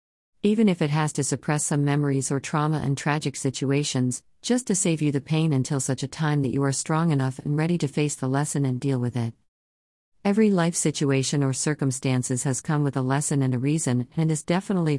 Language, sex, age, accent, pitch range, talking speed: English, female, 50-69, American, 130-165 Hz, 215 wpm